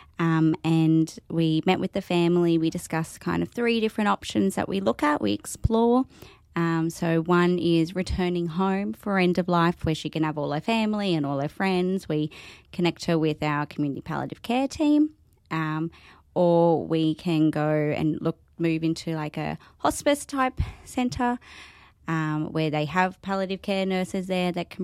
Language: English